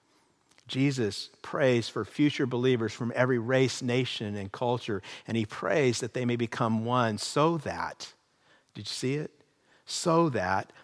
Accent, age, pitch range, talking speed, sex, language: American, 50-69, 105-130 Hz, 150 wpm, male, English